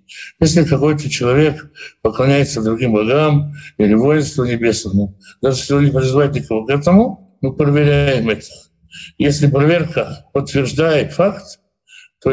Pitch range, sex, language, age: 120-150 Hz, male, Russian, 60-79